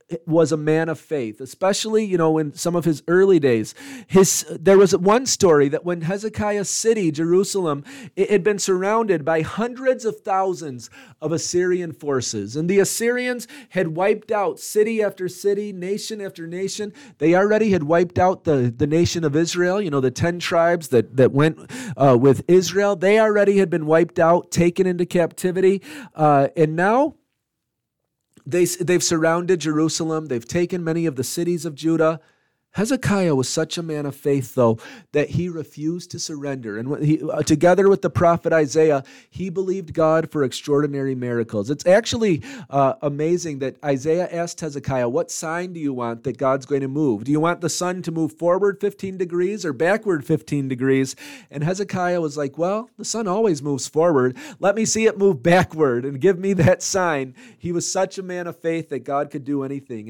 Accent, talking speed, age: American, 180 wpm, 40-59